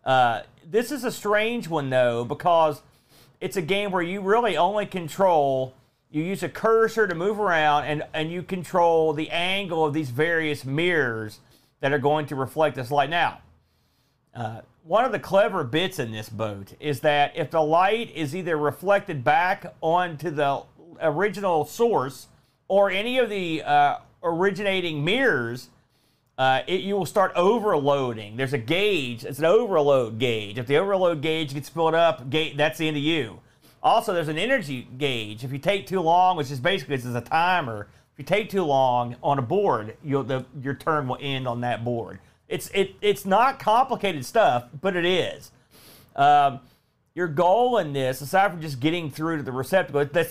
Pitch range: 140-190 Hz